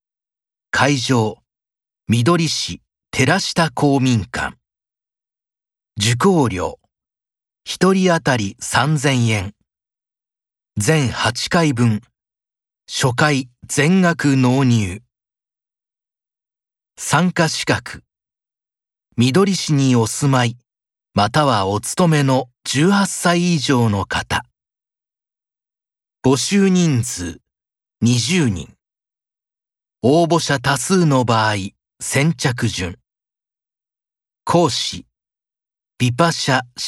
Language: Japanese